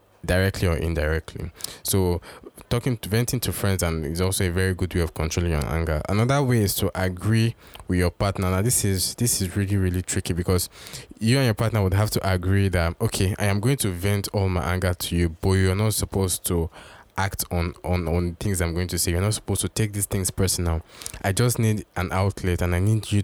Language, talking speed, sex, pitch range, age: English, 225 wpm, male, 90-105 Hz, 20-39